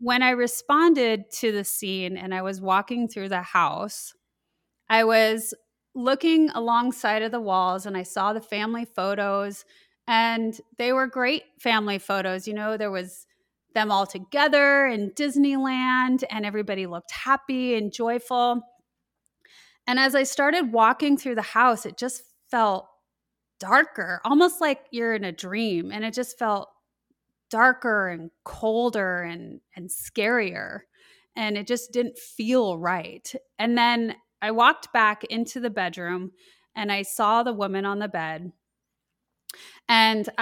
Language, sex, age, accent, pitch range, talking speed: English, female, 30-49, American, 205-250 Hz, 145 wpm